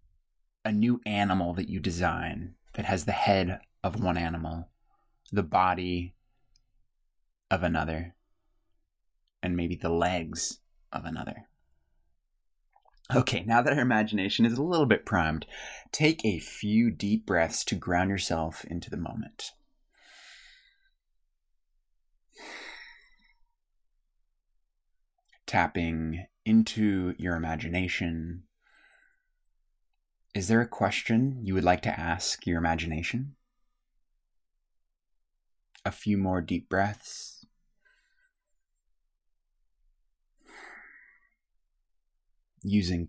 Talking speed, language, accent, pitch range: 90 wpm, English, American, 80-110 Hz